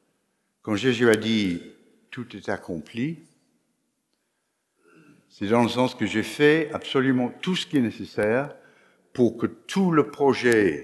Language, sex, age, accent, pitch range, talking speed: French, male, 60-79, French, 100-135 Hz, 140 wpm